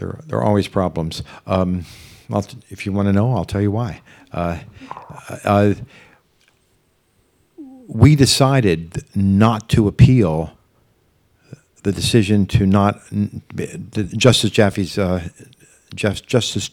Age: 50-69